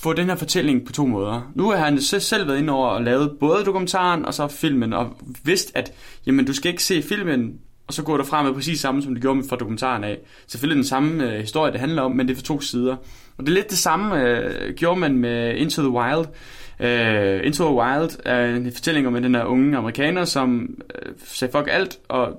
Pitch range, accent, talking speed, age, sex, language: 120-150 Hz, native, 245 wpm, 20-39, male, Danish